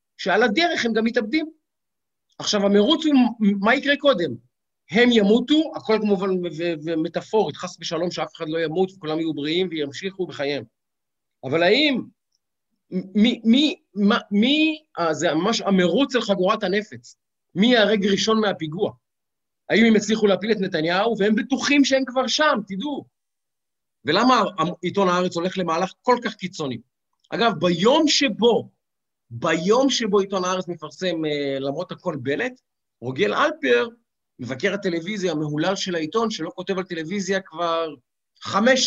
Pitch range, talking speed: 165-225 Hz, 140 wpm